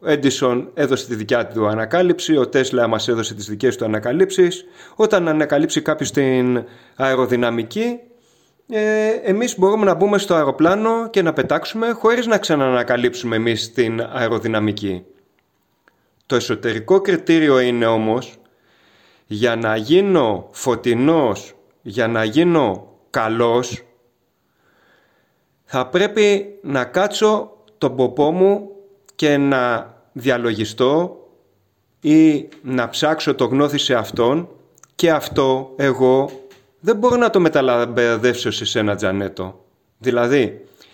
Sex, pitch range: male, 120-180 Hz